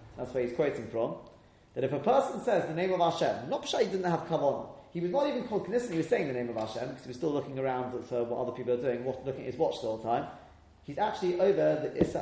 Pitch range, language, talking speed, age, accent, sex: 120-180 Hz, English, 290 wpm, 30-49, British, male